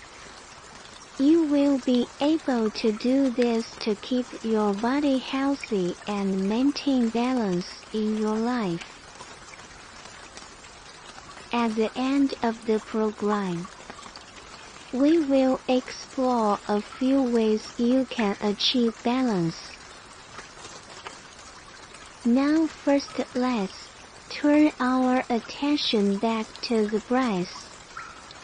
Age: 50-69